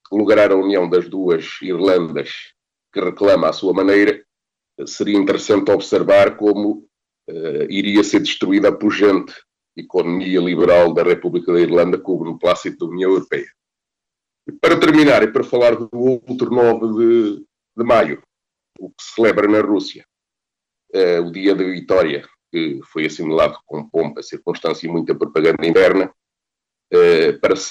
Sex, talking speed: male, 150 wpm